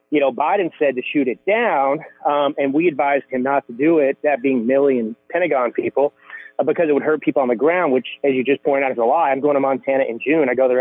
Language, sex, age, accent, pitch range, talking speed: English, male, 30-49, American, 135-175 Hz, 270 wpm